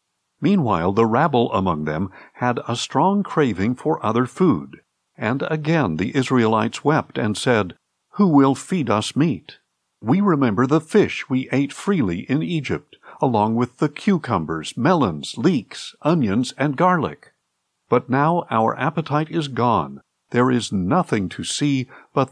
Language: English